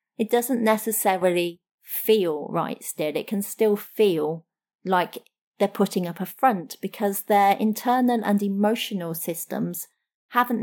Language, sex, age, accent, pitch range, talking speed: English, female, 30-49, British, 185-225 Hz, 130 wpm